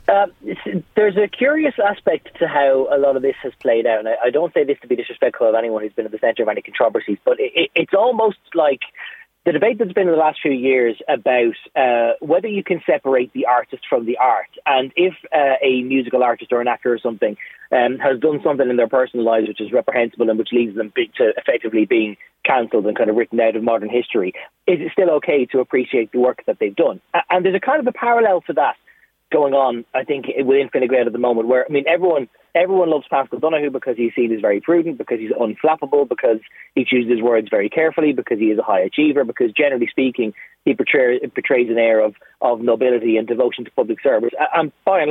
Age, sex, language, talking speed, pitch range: 30-49, male, English, 230 wpm, 120-180 Hz